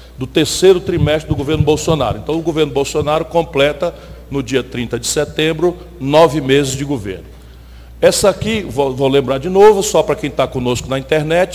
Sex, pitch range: male, 130-175 Hz